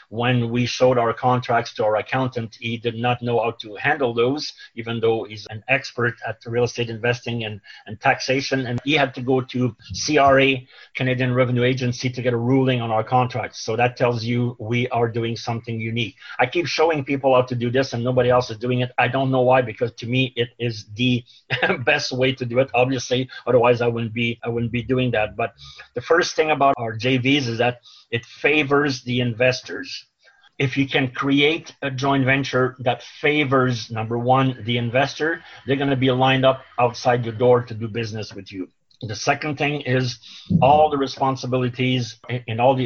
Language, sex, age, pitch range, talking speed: English, male, 30-49, 120-130 Hz, 200 wpm